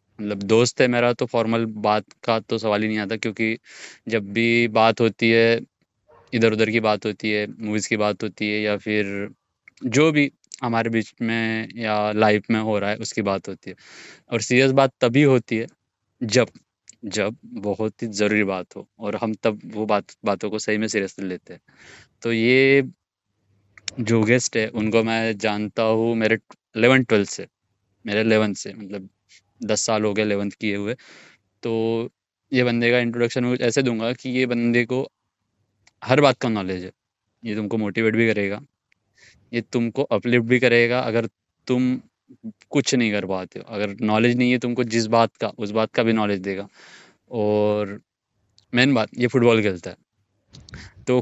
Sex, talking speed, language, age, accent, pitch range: male, 175 wpm, Hindi, 20-39, native, 105-120 Hz